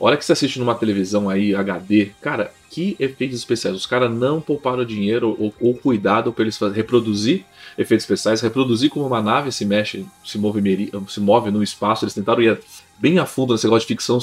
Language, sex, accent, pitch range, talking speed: Portuguese, male, Brazilian, 105-130 Hz, 200 wpm